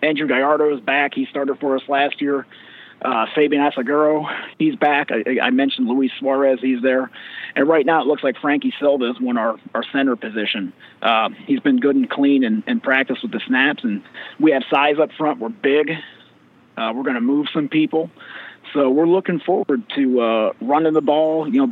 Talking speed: 205 wpm